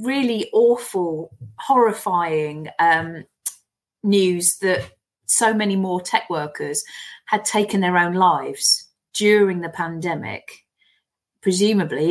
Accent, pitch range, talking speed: British, 155-195 Hz, 100 wpm